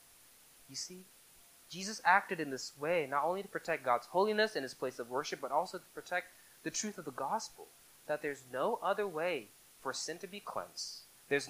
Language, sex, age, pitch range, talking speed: English, male, 20-39, 145-200 Hz, 200 wpm